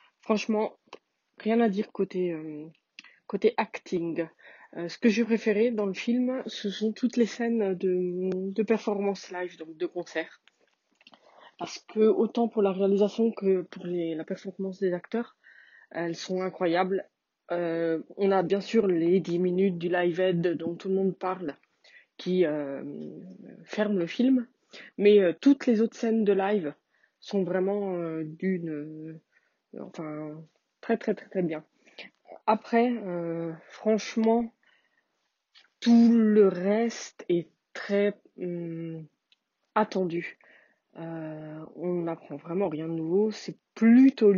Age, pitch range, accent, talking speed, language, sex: 20-39, 170-220 Hz, French, 135 wpm, French, female